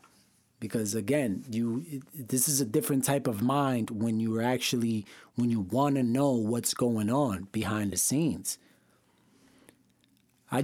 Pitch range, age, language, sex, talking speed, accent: 110-140 Hz, 30-49, English, male, 140 wpm, American